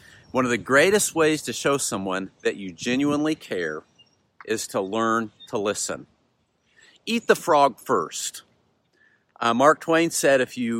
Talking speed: 150 wpm